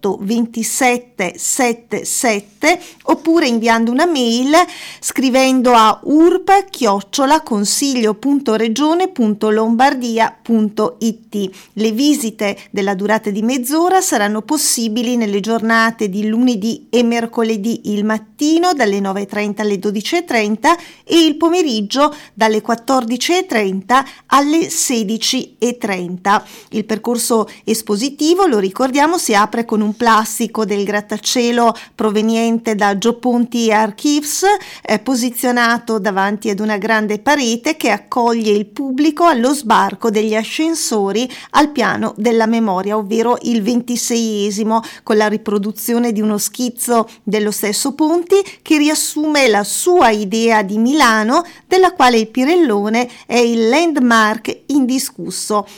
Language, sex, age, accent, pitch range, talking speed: Italian, female, 40-59, native, 215-280 Hz, 105 wpm